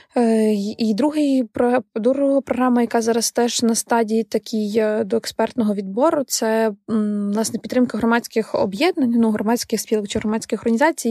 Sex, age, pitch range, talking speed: female, 20-39, 215-235 Hz, 125 wpm